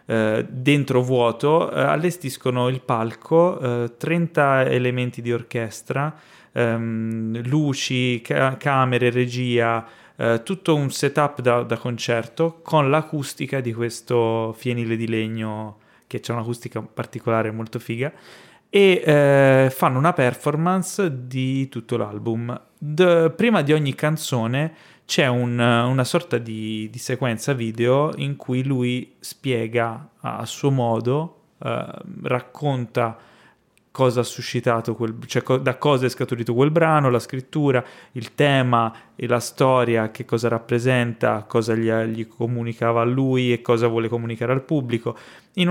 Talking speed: 120 wpm